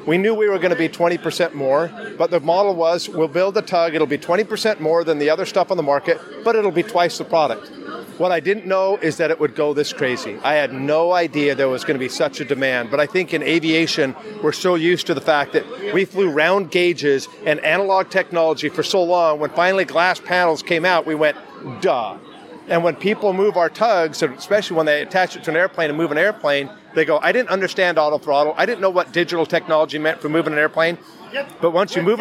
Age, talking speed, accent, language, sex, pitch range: 40-59, 240 wpm, American, English, male, 150-185 Hz